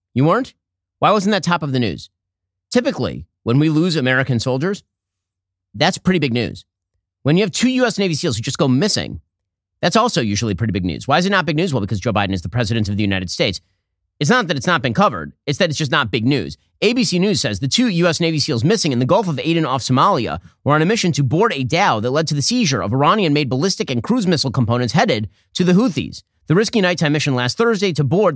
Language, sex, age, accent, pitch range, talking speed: English, male, 30-49, American, 115-170 Hz, 245 wpm